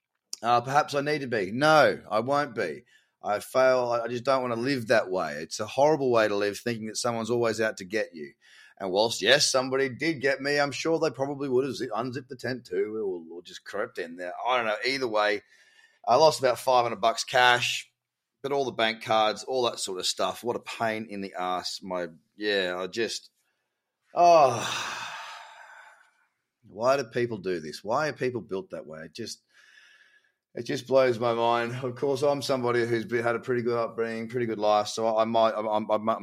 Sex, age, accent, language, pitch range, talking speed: male, 30-49, Australian, English, 110-135 Hz, 210 wpm